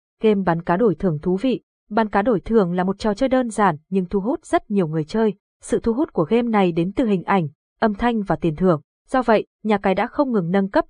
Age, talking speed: 20-39, 265 wpm